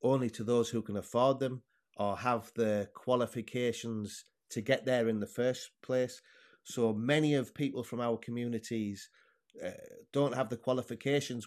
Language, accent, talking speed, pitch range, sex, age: English, British, 155 wpm, 115-140 Hz, male, 30-49